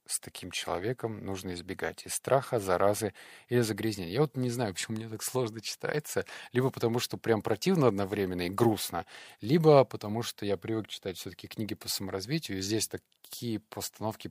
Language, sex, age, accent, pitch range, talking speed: Russian, male, 30-49, native, 95-115 Hz, 175 wpm